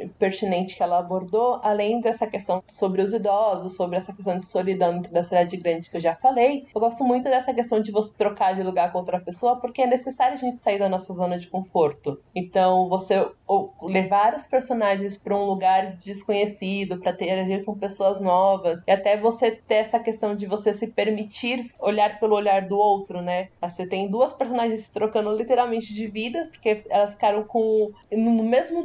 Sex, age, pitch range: female, 20-39, 195-240 Hz